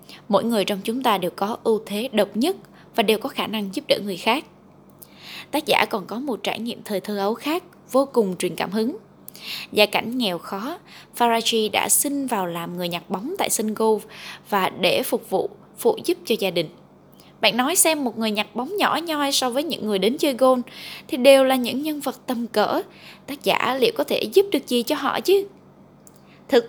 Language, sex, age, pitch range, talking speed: Vietnamese, female, 10-29, 210-270 Hz, 215 wpm